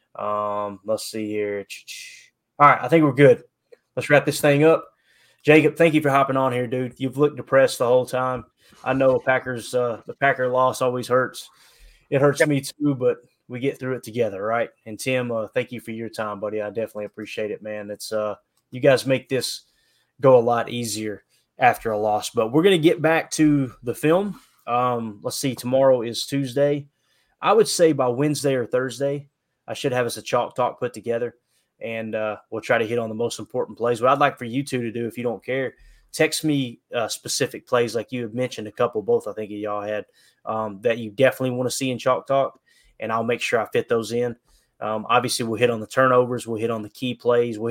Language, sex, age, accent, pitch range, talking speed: English, male, 20-39, American, 110-135 Hz, 225 wpm